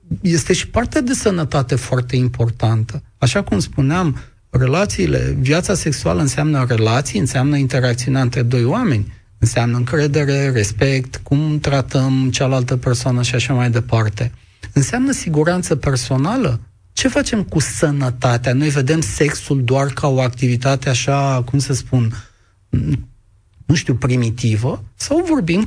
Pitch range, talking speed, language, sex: 120-155 Hz, 125 wpm, Romanian, male